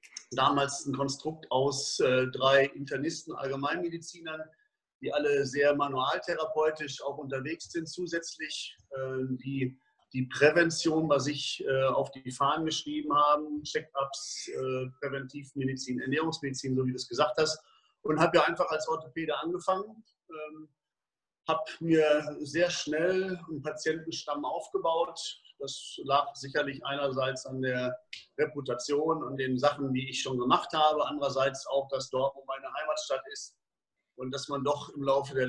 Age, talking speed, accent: 40-59, 140 wpm, German